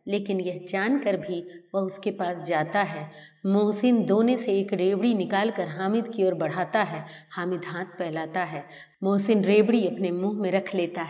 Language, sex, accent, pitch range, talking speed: Hindi, female, native, 175-225 Hz, 170 wpm